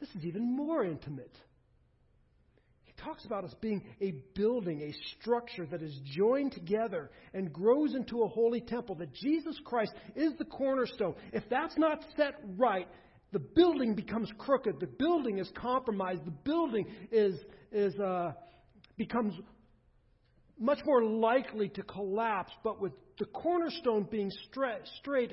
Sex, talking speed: male, 140 wpm